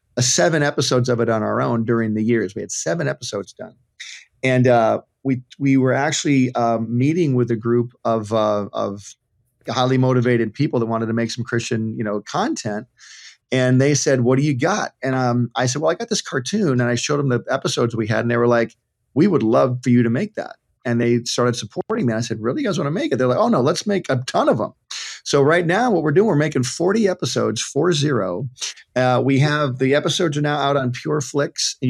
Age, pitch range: 40-59, 120-145 Hz